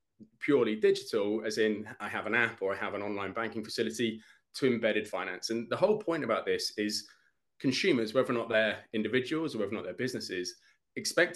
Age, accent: 20-39, British